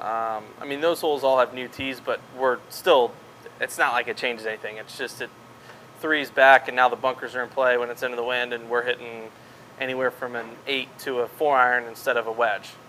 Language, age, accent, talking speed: English, 20-39, American, 235 wpm